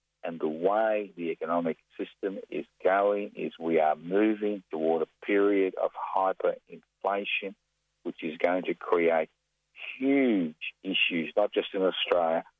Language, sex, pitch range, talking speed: English, male, 80-110 Hz, 135 wpm